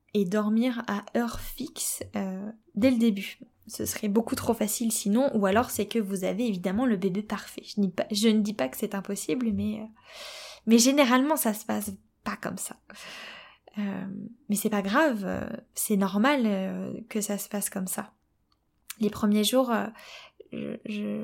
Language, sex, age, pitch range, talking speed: French, female, 10-29, 200-230 Hz, 180 wpm